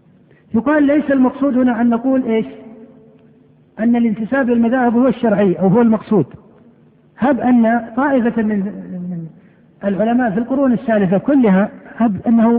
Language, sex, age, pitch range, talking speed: Arabic, male, 50-69, 205-245 Hz, 125 wpm